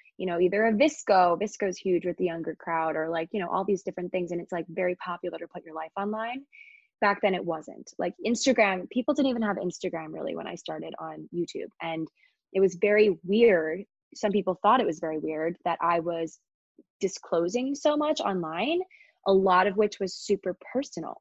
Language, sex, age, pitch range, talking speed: English, female, 20-39, 170-215 Hz, 205 wpm